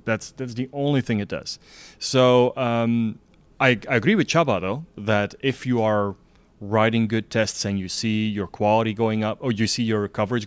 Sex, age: male, 30-49